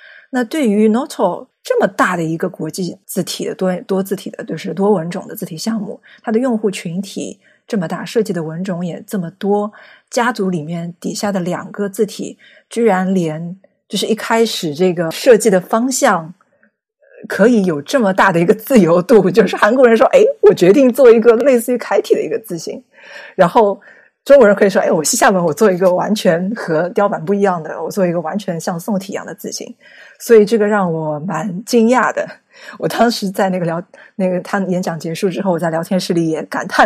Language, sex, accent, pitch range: Chinese, female, native, 180-225 Hz